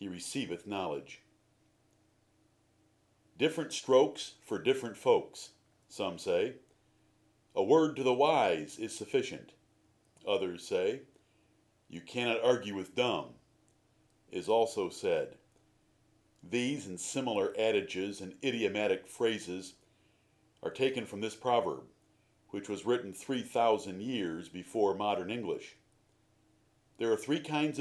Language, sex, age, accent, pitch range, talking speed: English, male, 50-69, American, 100-130 Hz, 110 wpm